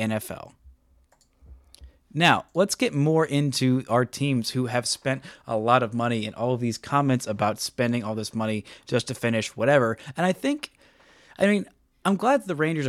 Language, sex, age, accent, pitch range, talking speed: English, male, 30-49, American, 110-145 Hz, 175 wpm